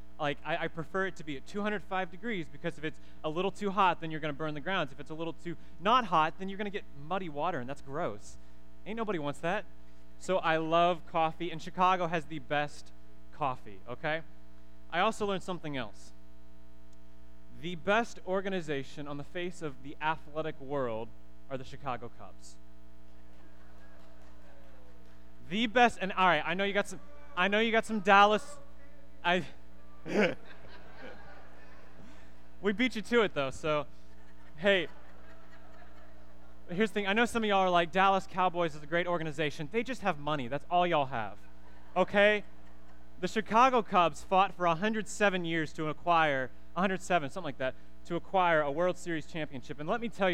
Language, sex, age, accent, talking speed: English, male, 20-39, American, 175 wpm